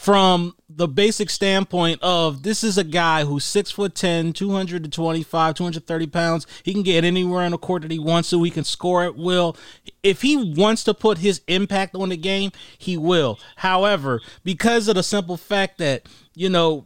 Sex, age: male, 30-49